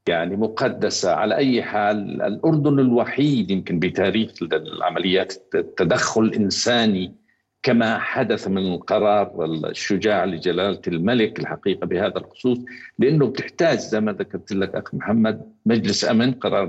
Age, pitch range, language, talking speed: 50-69, 100-135 Hz, Arabic, 120 wpm